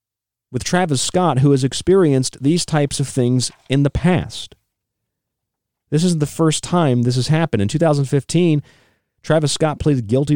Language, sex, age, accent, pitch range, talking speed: English, male, 40-59, American, 95-140 Hz, 155 wpm